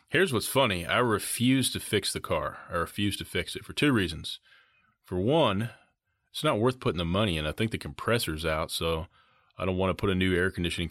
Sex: male